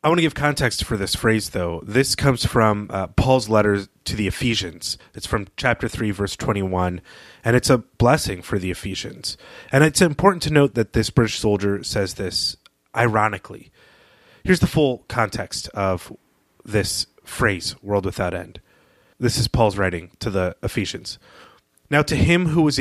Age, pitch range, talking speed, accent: 30-49, 95-125 Hz, 170 wpm, American